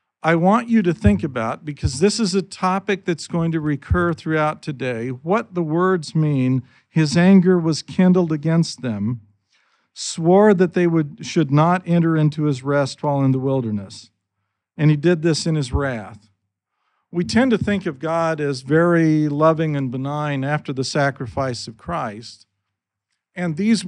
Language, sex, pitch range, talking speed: English, male, 125-170 Hz, 165 wpm